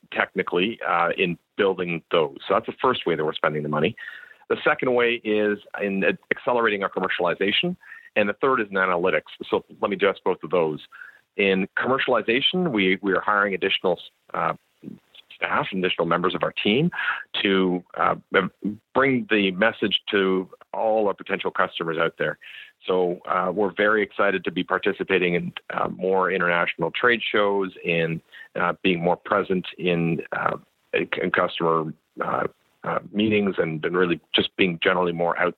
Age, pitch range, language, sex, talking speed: 40-59, 90-110 Hz, English, male, 160 wpm